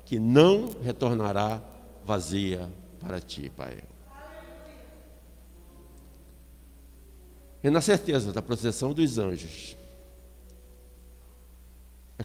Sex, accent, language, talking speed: male, Brazilian, Portuguese, 75 wpm